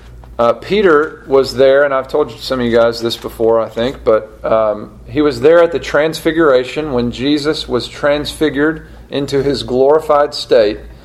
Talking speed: 170 wpm